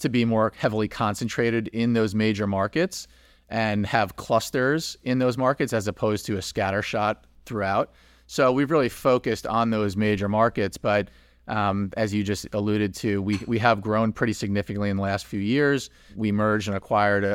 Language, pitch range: English, 95-115 Hz